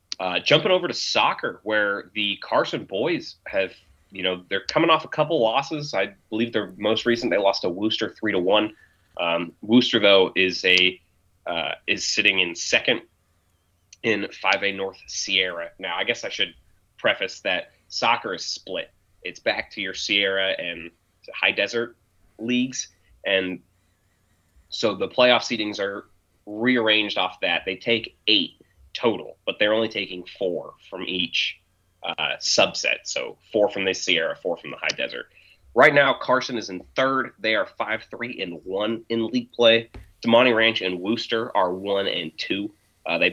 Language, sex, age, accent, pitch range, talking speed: English, male, 30-49, American, 90-110 Hz, 170 wpm